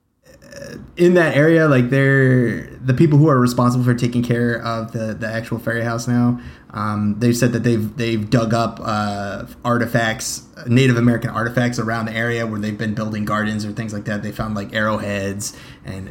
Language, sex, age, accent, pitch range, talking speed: English, male, 20-39, American, 110-130 Hz, 190 wpm